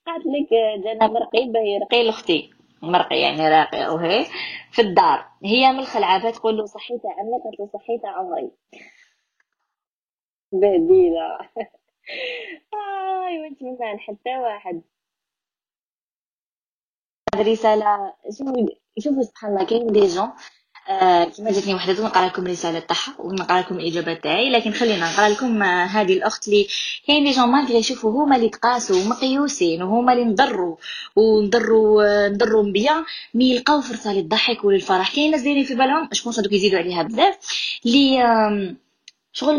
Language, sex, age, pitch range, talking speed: Arabic, female, 20-39, 205-265 Hz, 140 wpm